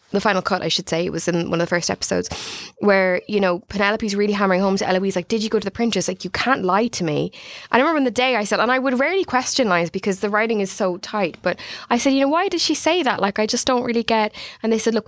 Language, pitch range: English, 180-230 Hz